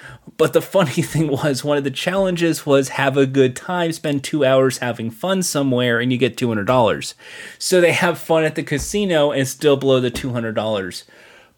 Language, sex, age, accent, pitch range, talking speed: English, male, 30-49, American, 125-160 Hz, 185 wpm